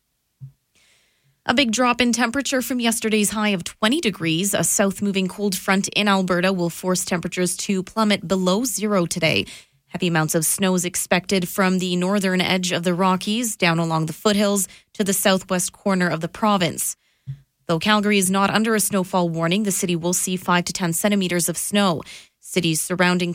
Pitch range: 175-205 Hz